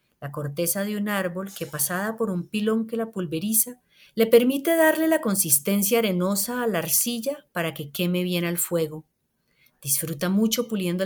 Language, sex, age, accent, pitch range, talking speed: Spanish, female, 40-59, Colombian, 170-230 Hz, 170 wpm